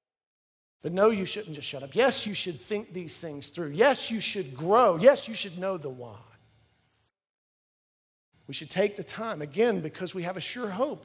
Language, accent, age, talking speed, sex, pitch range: English, American, 40-59, 195 wpm, male, 135-195 Hz